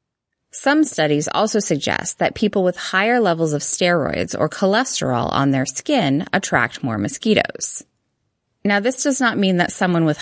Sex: female